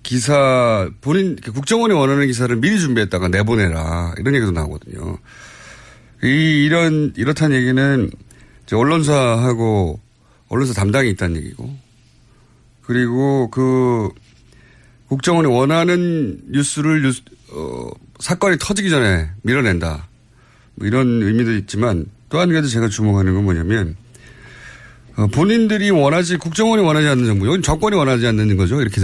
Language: Korean